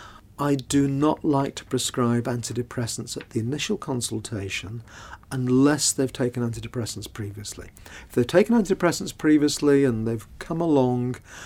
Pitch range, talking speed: 115-135 Hz, 130 wpm